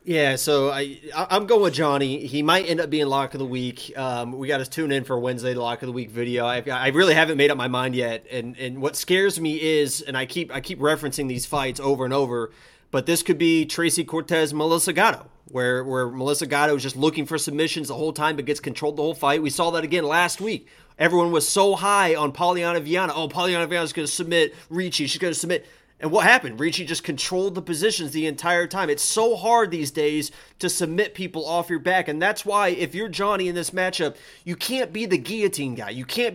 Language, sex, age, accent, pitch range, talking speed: English, male, 30-49, American, 145-185 Hz, 240 wpm